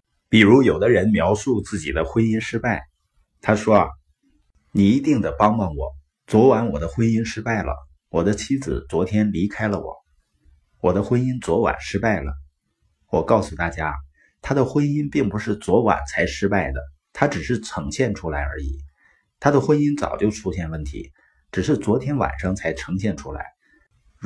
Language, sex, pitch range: Chinese, male, 75-115 Hz